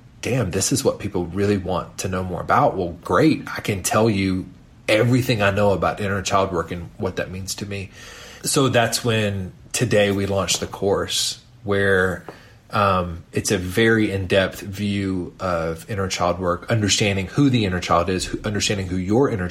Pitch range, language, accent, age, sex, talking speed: 90-110 Hz, English, American, 30-49, male, 180 wpm